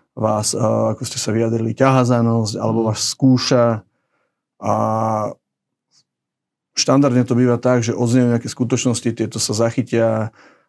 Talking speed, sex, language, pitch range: 120 wpm, male, Slovak, 110-125 Hz